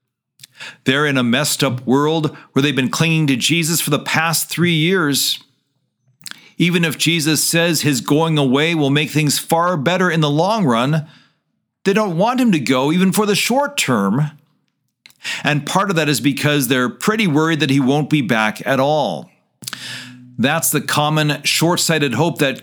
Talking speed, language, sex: 175 wpm, English, male